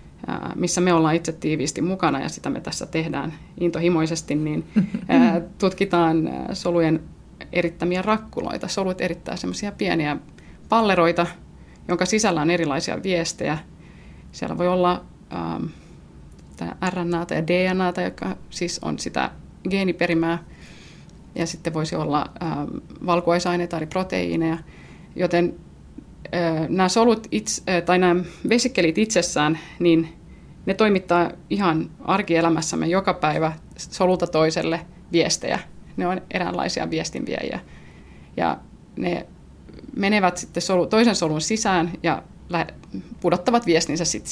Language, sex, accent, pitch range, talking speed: Finnish, female, native, 165-185 Hz, 105 wpm